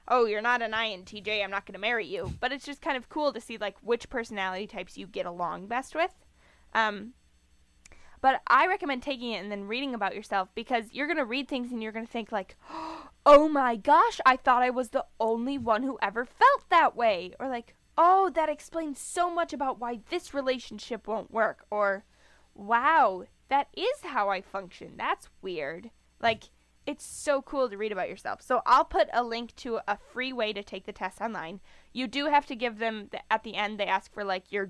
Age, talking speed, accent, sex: 10-29, 215 wpm, American, female